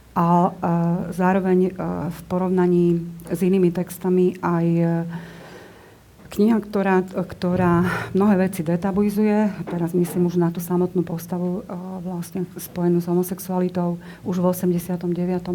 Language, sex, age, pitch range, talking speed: Slovak, female, 40-59, 170-180 Hz, 110 wpm